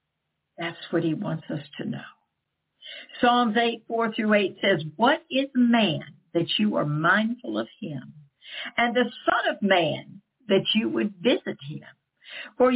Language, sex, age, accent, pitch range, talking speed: English, female, 60-79, American, 165-240 Hz, 155 wpm